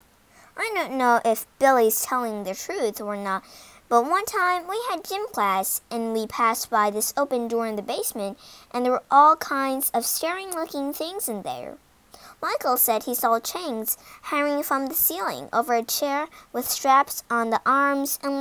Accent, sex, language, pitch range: American, male, Chinese, 230-300 Hz